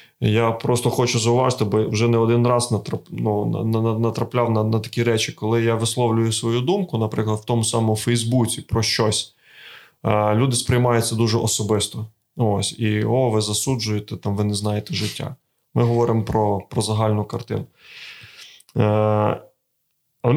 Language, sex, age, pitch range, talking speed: Ukrainian, male, 20-39, 110-125 Hz, 160 wpm